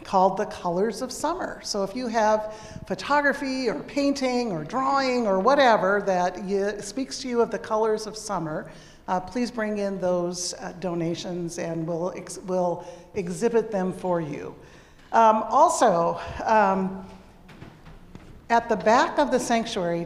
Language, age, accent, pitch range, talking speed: English, 50-69, American, 185-235 Hz, 150 wpm